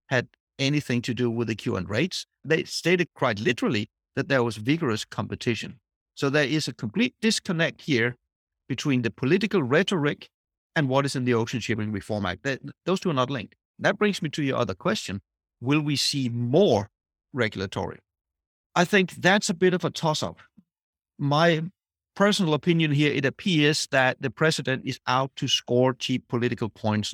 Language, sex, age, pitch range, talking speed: English, male, 50-69, 115-155 Hz, 180 wpm